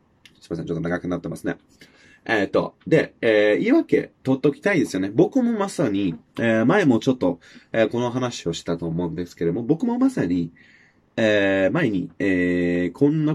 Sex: male